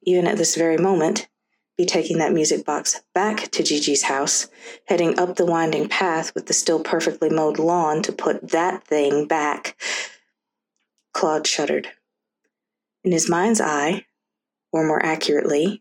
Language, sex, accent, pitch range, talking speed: English, female, American, 160-200 Hz, 150 wpm